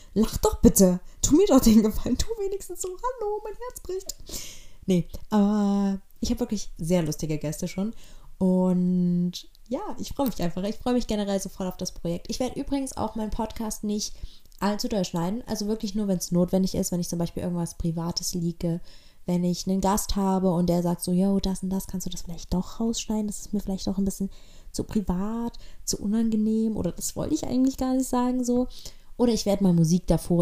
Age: 20-39